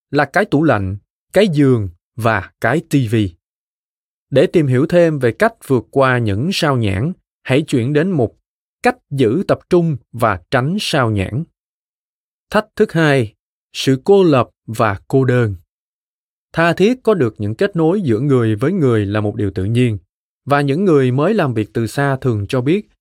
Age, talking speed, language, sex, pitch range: 20-39, 175 wpm, Vietnamese, male, 110-155 Hz